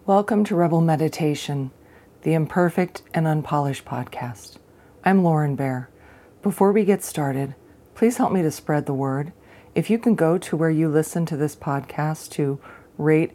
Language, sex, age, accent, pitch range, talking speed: English, female, 40-59, American, 140-170 Hz, 160 wpm